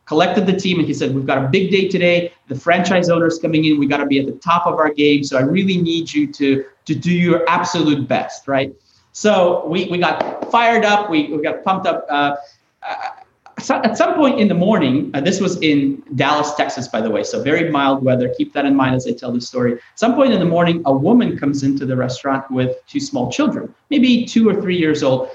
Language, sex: English, male